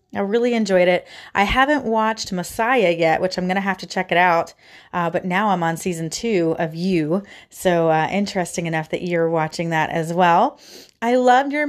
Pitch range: 155-195 Hz